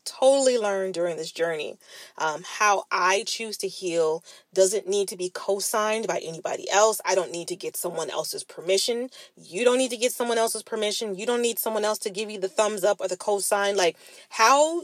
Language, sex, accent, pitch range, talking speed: English, female, American, 185-300 Hz, 205 wpm